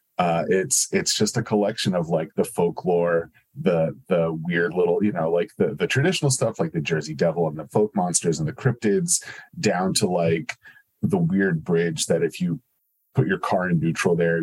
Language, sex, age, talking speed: English, male, 30-49, 195 wpm